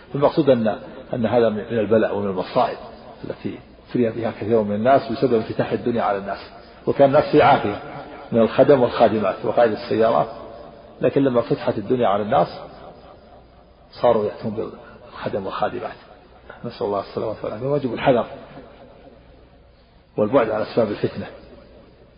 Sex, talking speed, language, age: male, 130 wpm, Arabic, 50-69